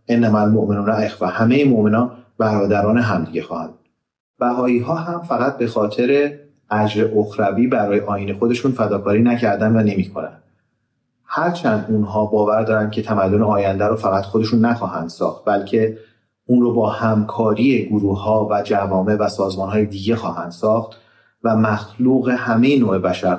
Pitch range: 105-125 Hz